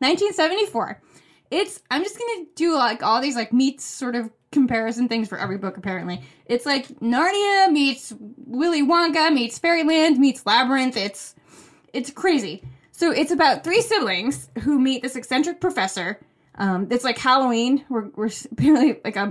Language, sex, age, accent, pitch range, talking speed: English, female, 20-39, American, 205-280 Hz, 155 wpm